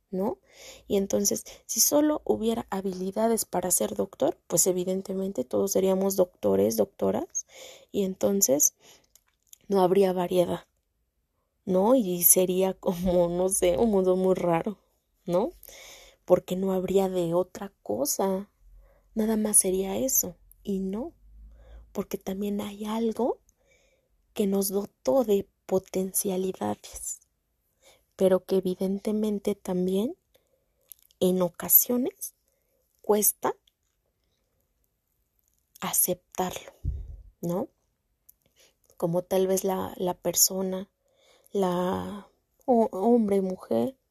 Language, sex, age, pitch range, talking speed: Spanish, female, 20-39, 185-220 Hz, 100 wpm